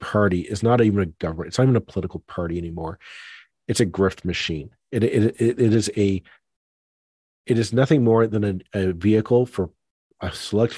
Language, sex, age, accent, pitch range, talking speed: English, male, 40-59, American, 95-120 Hz, 190 wpm